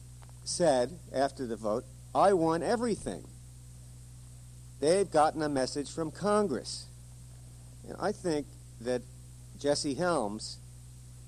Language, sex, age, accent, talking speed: English, male, 50-69, American, 100 wpm